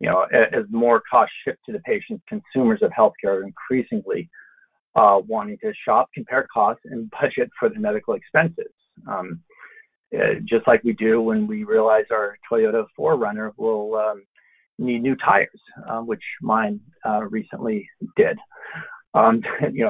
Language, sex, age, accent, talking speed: English, male, 40-59, American, 155 wpm